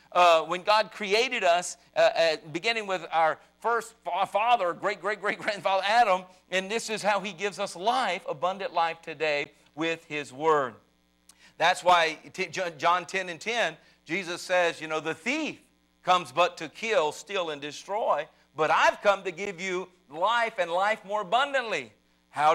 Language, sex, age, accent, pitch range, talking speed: English, male, 50-69, American, 175-220 Hz, 155 wpm